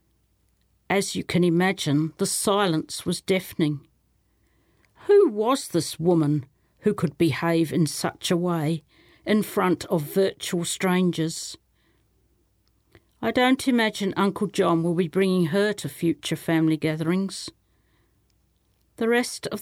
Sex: female